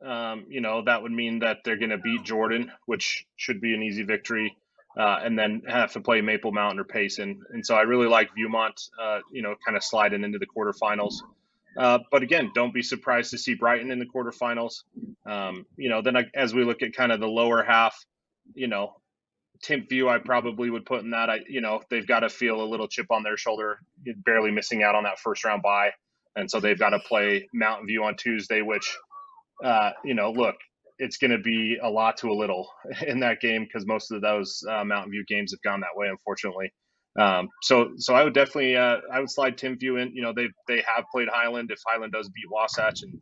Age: 30-49